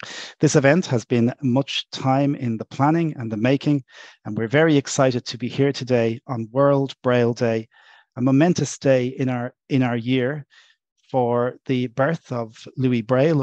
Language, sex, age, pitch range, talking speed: English, male, 40-59, 120-140 Hz, 165 wpm